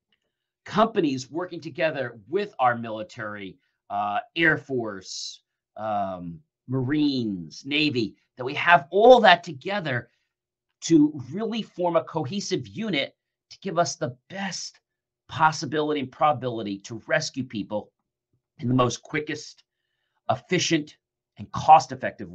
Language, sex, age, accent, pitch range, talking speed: English, male, 40-59, American, 120-170 Hz, 115 wpm